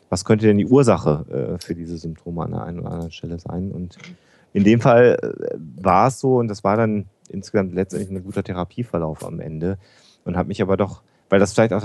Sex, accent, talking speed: male, German, 225 wpm